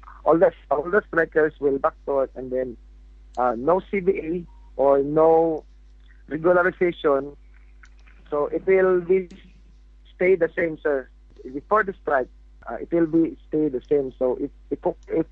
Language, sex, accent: English, male, Filipino